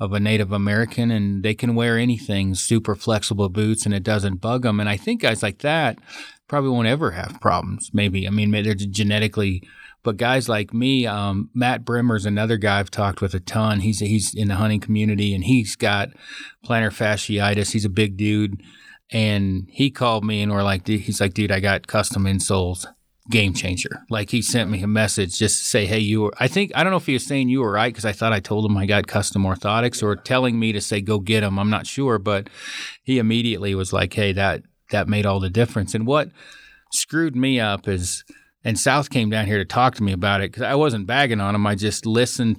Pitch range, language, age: 100-115 Hz, English, 30-49